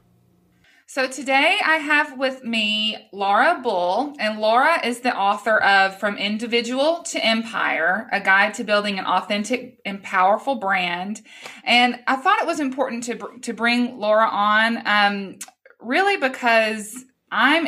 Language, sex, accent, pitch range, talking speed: English, female, American, 190-245 Hz, 145 wpm